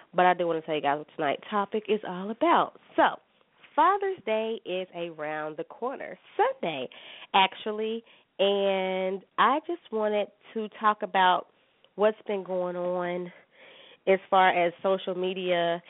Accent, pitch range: American, 180-230 Hz